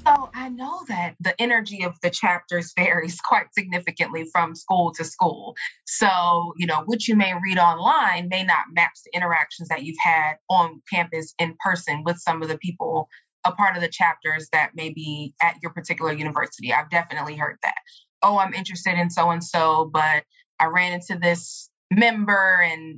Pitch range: 165-210 Hz